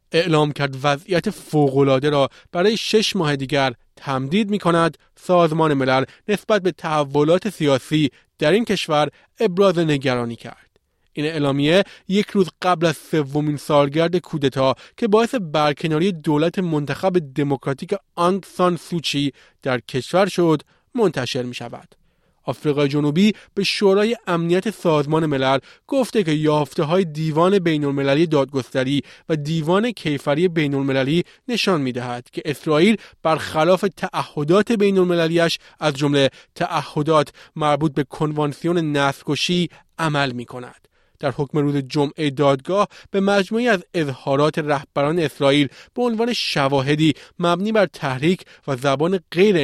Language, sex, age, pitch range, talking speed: Persian, male, 30-49, 140-180 Hz, 130 wpm